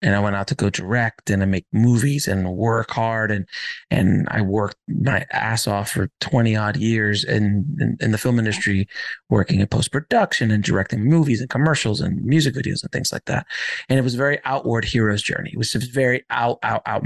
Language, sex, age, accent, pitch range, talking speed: English, male, 30-49, American, 110-140 Hz, 210 wpm